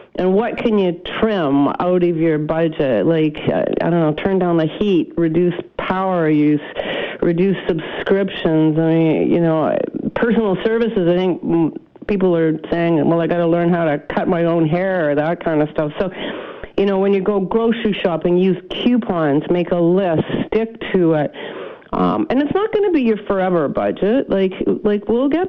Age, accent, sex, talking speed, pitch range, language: 50-69, American, female, 185 wpm, 165-210 Hz, English